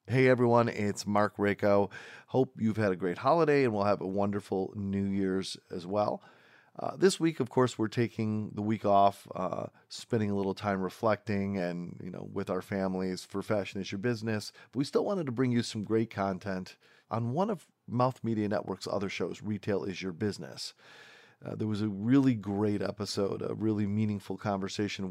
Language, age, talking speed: English, 40-59, 190 wpm